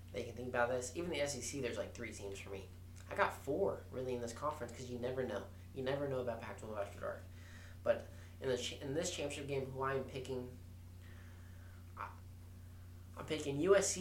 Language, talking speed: English, 205 wpm